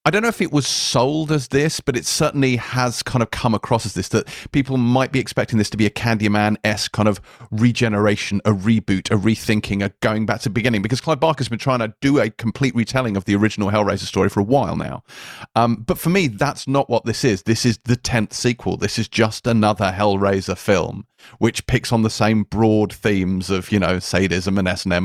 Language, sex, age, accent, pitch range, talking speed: English, male, 30-49, British, 105-125 Hz, 225 wpm